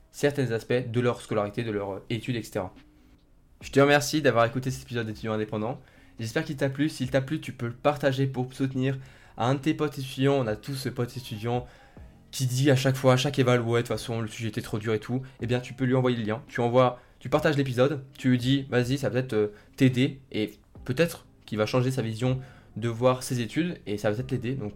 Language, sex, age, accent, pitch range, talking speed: French, male, 20-39, French, 115-135 Hz, 240 wpm